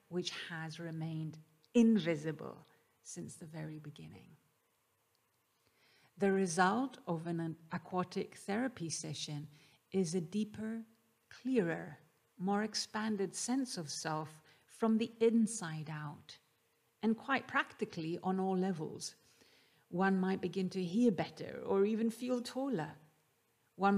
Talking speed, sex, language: 115 wpm, female, English